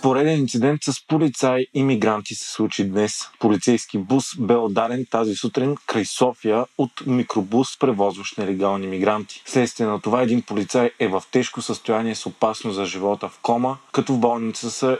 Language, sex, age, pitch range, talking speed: Bulgarian, male, 30-49, 105-125 Hz, 165 wpm